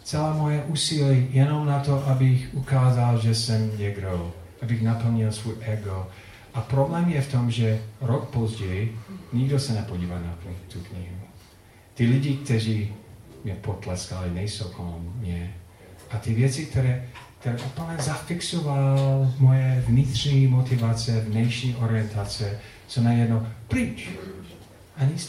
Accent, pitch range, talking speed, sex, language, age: native, 105-145 Hz, 130 wpm, male, Czech, 40-59